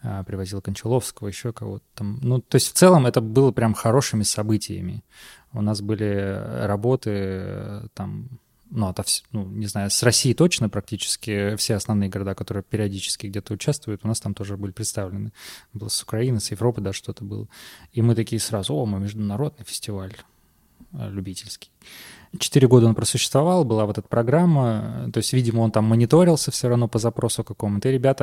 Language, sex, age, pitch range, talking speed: Russian, male, 20-39, 100-120 Hz, 170 wpm